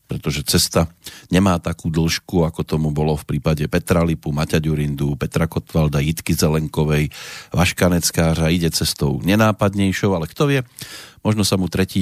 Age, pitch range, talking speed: 40-59, 80-105 Hz, 145 wpm